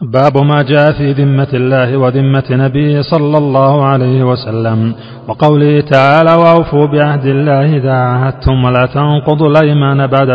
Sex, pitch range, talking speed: male, 135-155 Hz, 135 wpm